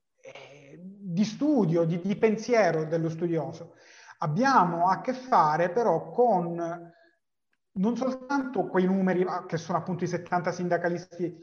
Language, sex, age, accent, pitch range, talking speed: Italian, male, 30-49, native, 170-215 Hz, 120 wpm